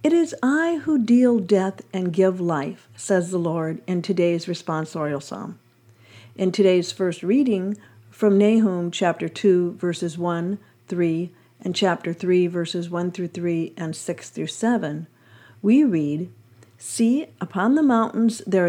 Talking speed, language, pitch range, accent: 145 wpm, English, 160-205 Hz, American